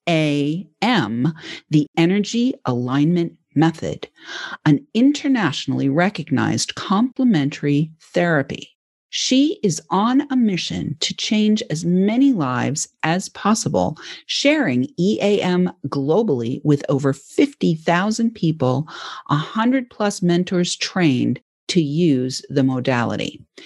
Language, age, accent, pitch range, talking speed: English, 50-69, American, 145-215 Hz, 105 wpm